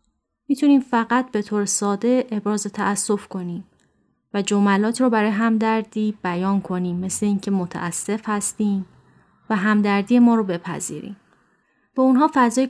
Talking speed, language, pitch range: 130 wpm, Persian, 185-225 Hz